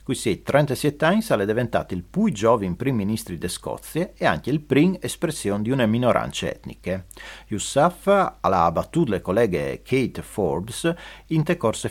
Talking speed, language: 160 wpm, Italian